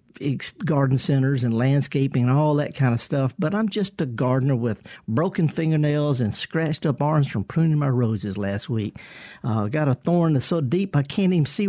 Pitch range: 130-170 Hz